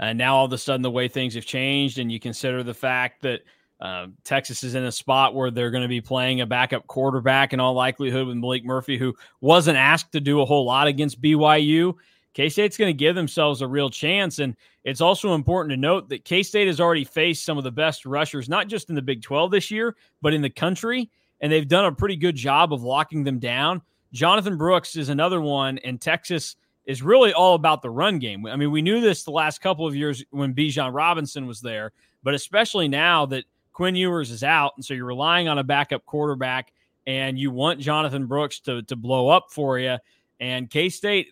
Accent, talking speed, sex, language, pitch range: American, 225 wpm, male, English, 130-165 Hz